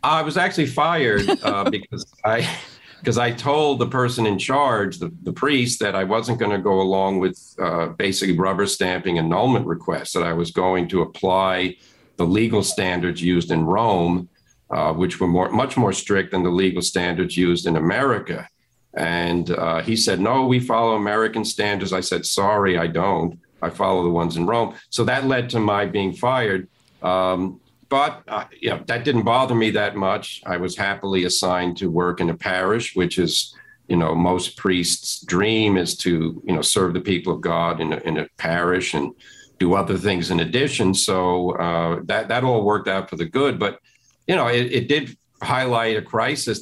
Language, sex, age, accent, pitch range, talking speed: English, male, 50-69, American, 90-115 Hz, 190 wpm